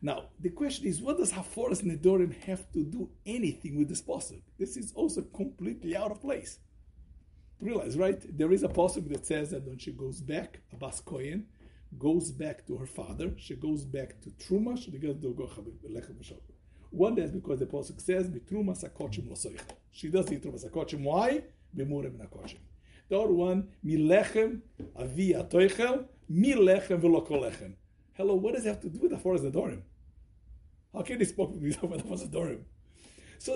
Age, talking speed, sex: 60-79, 155 wpm, male